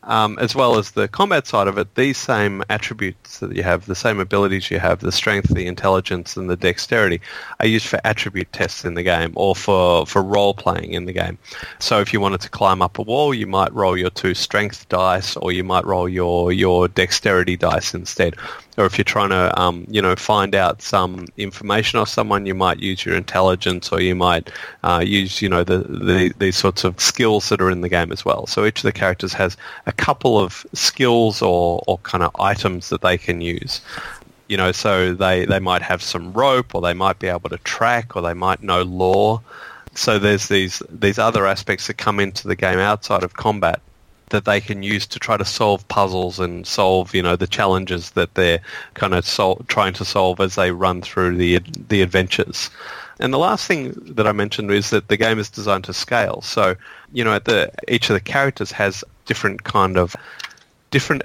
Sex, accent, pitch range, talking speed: male, Australian, 90-105 Hz, 215 wpm